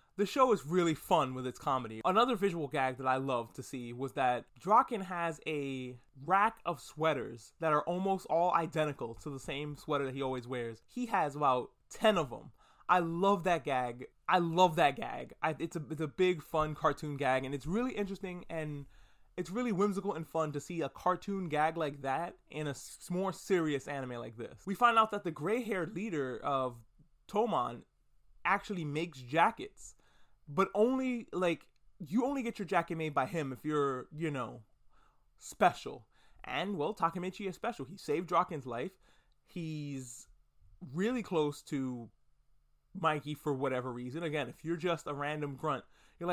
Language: English